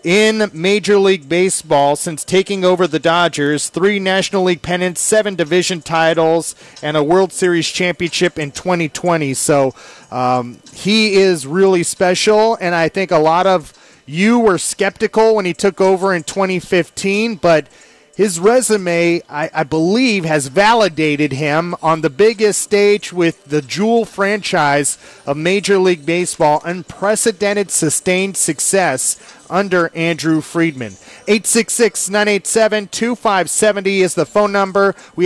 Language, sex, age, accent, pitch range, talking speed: English, male, 30-49, American, 165-210 Hz, 130 wpm